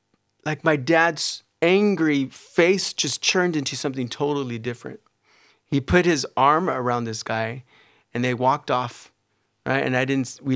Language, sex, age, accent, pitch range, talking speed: English, male, 30-49, American, 110-140 Hz, 155 wpm